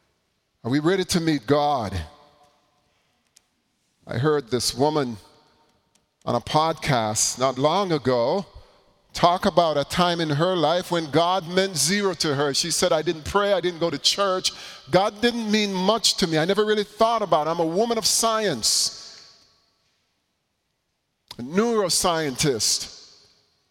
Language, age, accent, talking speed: English, 40-59, American, 145 wpm